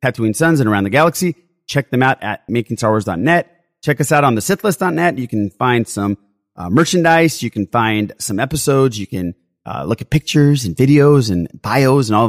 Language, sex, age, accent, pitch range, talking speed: English, male, 30-49, American, 100-130 Hz, 195 wpm